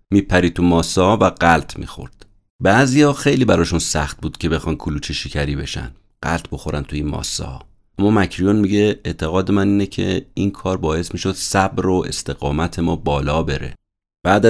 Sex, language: male, Persian